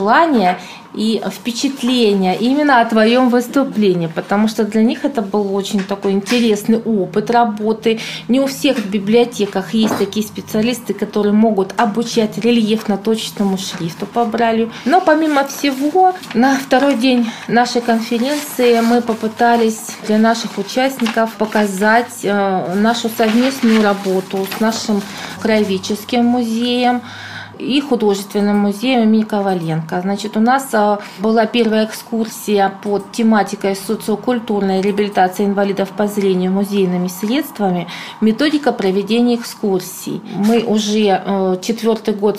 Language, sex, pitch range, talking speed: Russian, female, 200-235 Hz, 120 wpm